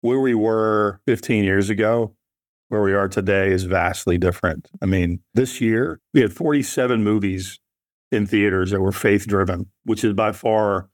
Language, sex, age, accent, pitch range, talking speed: English, male, 50-69, American, 95-115 Hz, 165 wpm